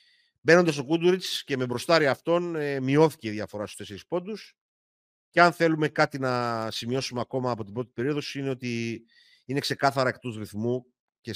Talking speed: 165 wpm